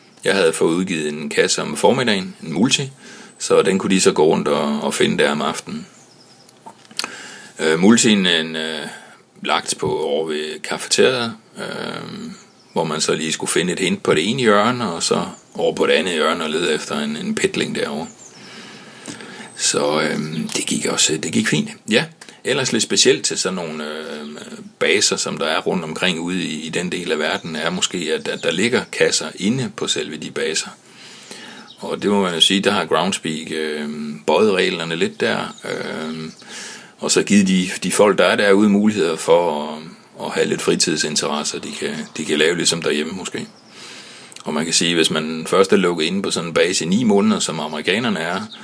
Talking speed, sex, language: 195 wpm, male, Danish